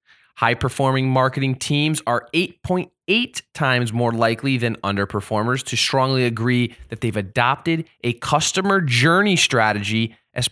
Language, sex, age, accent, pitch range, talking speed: English, male, 20-39, American, 105-130 Hz, 120 wpm